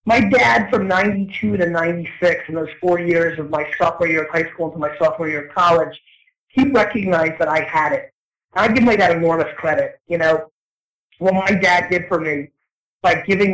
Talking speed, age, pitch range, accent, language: 205 wpm, 30-49, 165-185 Hz, American, French